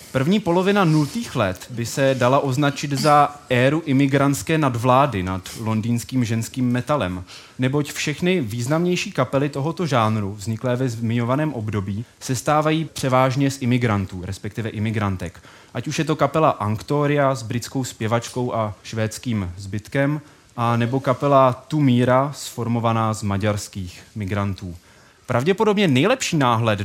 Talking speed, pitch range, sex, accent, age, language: 125 wpm, 115-150 Hz, male, native, 20-39, Czech